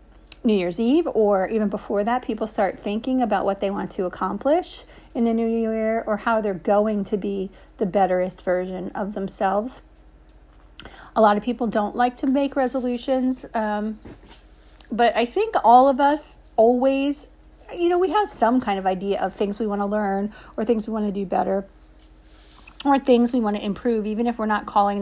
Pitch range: 195-230 Hz